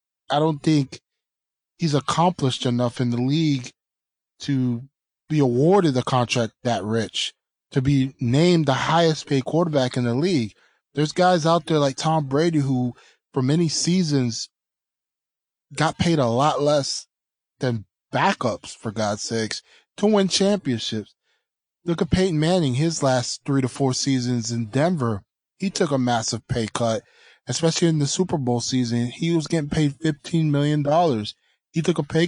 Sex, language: male, English